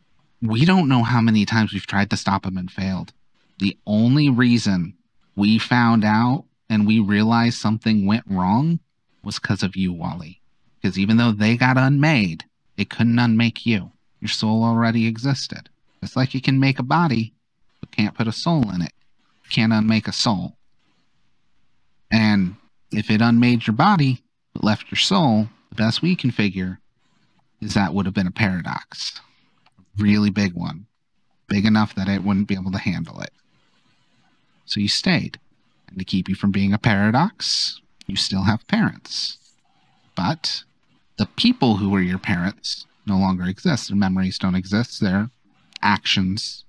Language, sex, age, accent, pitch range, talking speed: English, male, 30-49, American, 100-120 Hz, 165 wpm